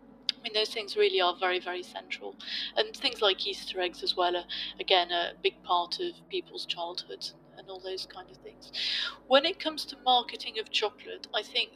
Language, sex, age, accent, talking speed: English, female, 30-49, British, 200 wpm